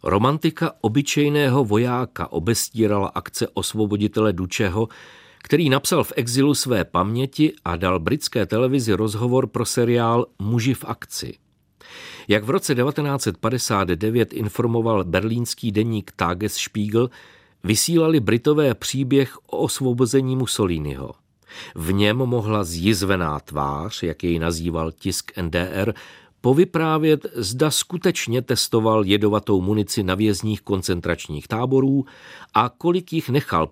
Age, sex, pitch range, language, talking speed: 50-69, male, 100-130 Hz, Czech, 110 wpm